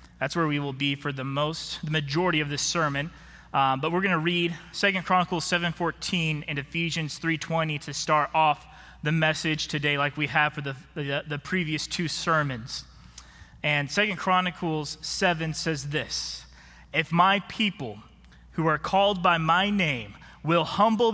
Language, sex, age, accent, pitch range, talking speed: English, male, 20-39, American, 145-175 Hz, 165 wpm